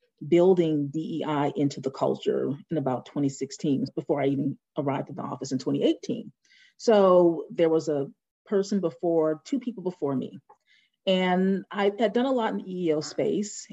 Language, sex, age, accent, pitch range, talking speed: English, female, 40-59, American, 155-200 Hz, 160 wpm